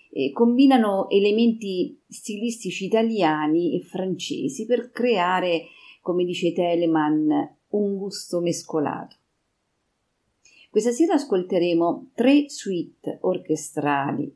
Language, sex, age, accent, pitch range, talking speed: Italian, female, 40-59, native, 160-225 Hz, 90 wpm